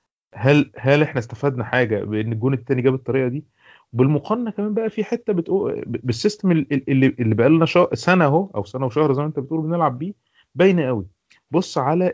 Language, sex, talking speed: Arabic, male, 190 wpm